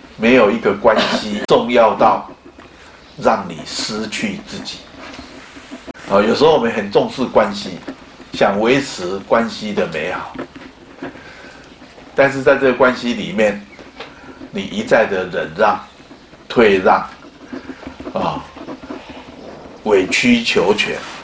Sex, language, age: male, Chinese, 50-69